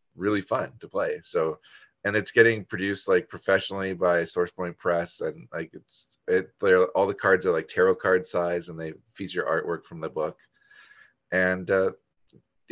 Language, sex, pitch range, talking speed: English, male, 90-120 Hz, 175 wpm